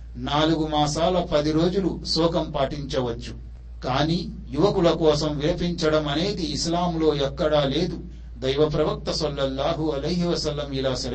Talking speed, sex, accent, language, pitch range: 90 wpm, male, native, Telugu, 135-165 Hz